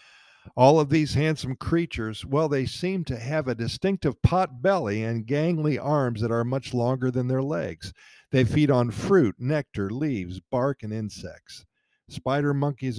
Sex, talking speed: male, 160 wpm